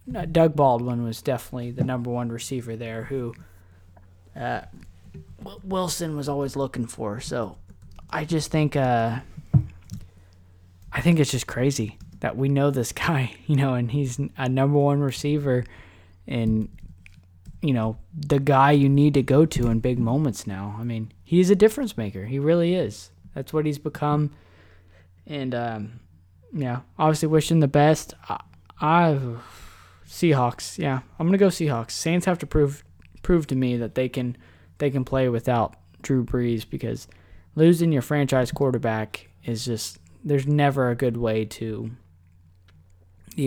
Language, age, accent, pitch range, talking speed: English, 20-39, American, 110-145 Hz, 155 wpm